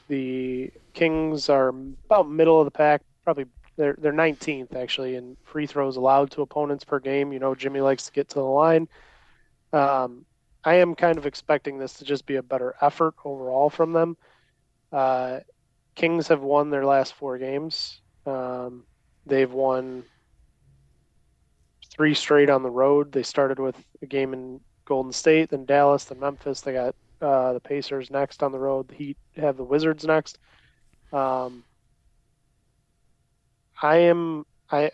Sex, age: male, 20-39